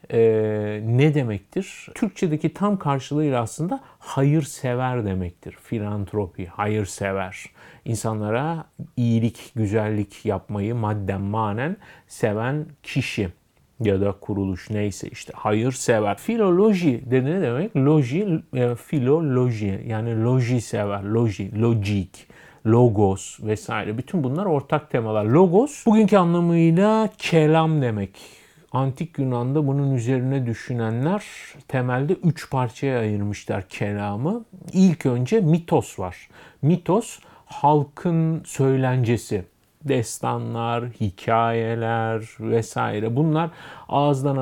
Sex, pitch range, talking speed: male, 110-155 Hz, 95 wpm